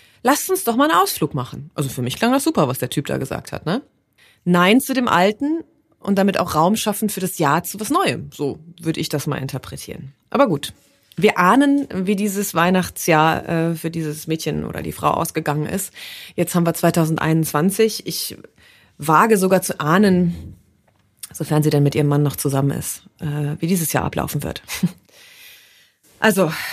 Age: 30-49